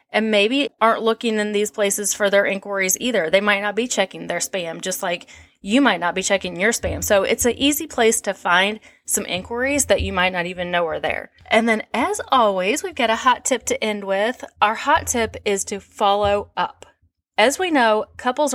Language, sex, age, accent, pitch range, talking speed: English, female, 30-49, American, 195-260 Hz, 215 wpm